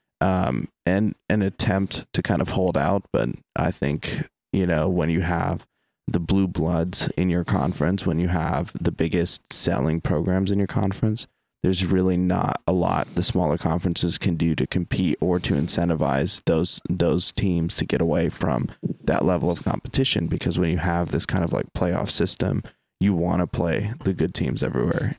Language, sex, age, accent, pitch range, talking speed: English, male, 20-39, American, 85-95 Hz, 185 wpm